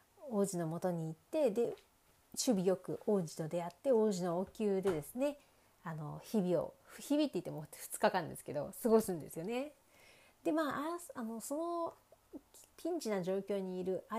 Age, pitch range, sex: 40-59, 180-255 Hz, female